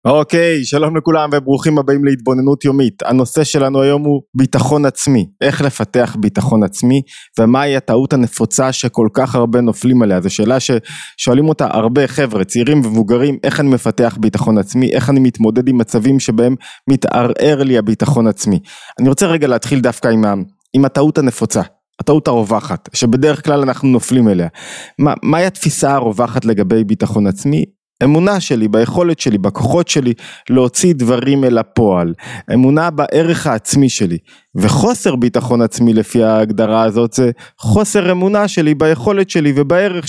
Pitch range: 115-150 Hz